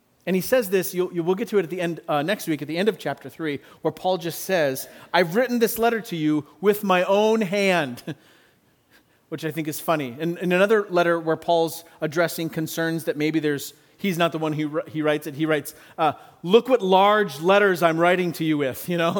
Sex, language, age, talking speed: male, English, 40-59, 235 wpm